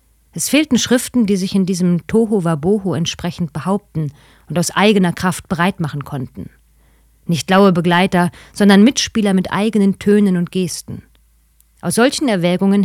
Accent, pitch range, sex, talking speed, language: German, 165-205 Hz, female, 140 wpm, German